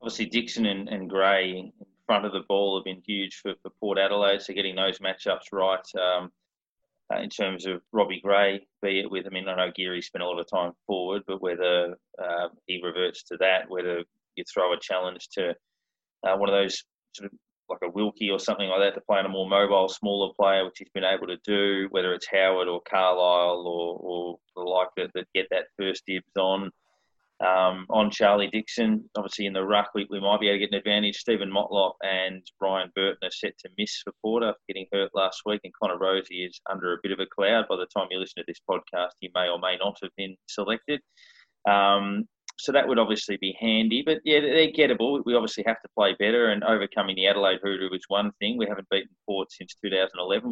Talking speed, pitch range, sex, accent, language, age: 225 wpm, 95-105 Hz, male, Australian, English, 20-39